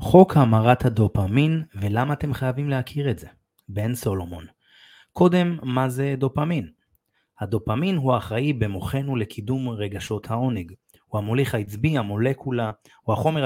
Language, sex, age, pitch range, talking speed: Hebrew, male, 30-49, 105-140 Hz, 125 wpm